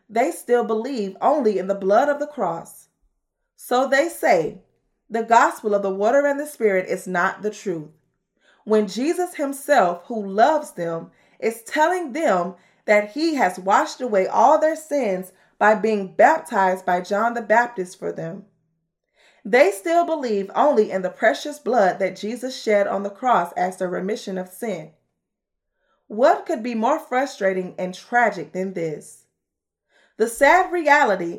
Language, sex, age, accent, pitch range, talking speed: English, female, 20-39, American, 185-270 Hz, 155 wpm